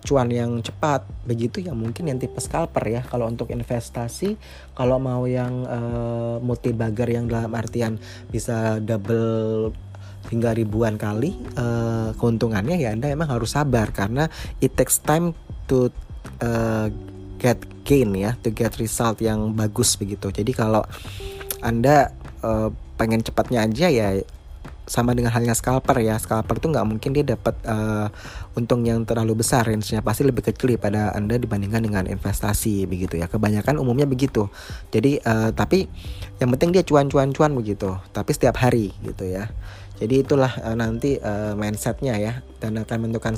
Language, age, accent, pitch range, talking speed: Indonesian, 20-39, native, 110-130 Hz, 150 wpm